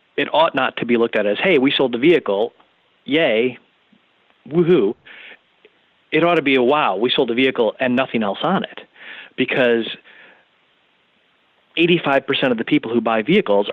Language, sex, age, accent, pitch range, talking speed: English, male, 40-59, American, 115-150 Hz, 165 wpm